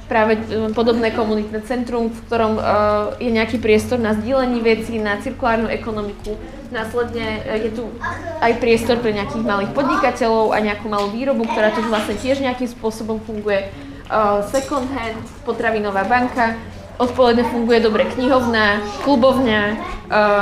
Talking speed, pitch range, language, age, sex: 130 wpm, 215-245 Hz, Czech, 20-39, female